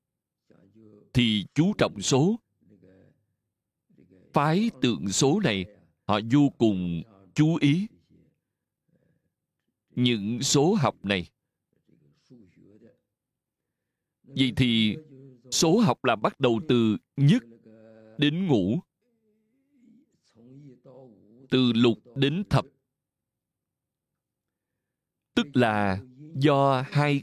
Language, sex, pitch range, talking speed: Vietnamese, male, 115-155 Hz, 80 wpm